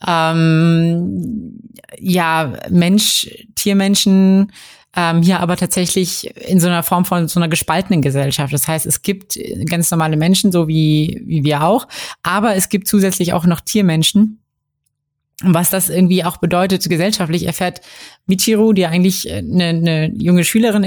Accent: German